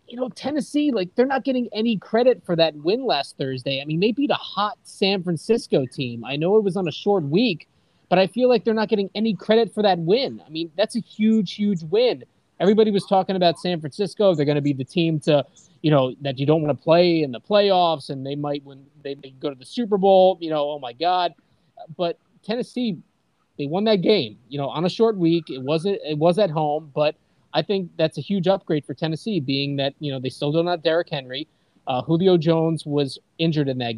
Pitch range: 140-185 Hz